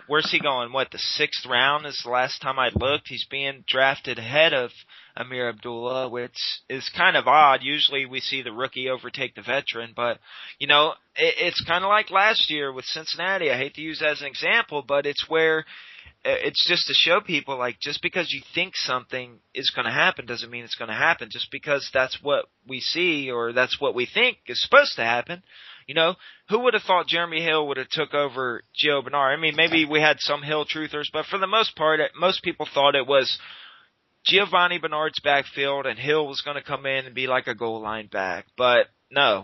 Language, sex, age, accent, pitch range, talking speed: English, male, 30-49, American, 130-165 Hz, 215 wpm